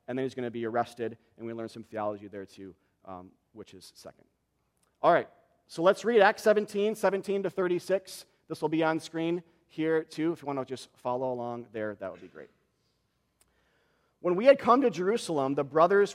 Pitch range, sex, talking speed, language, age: 130-170 Hz, male, 205 wpm, English, 40-59